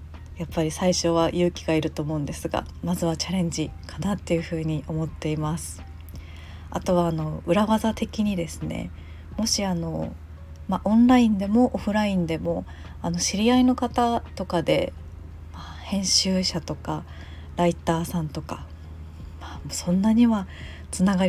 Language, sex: Japanese, female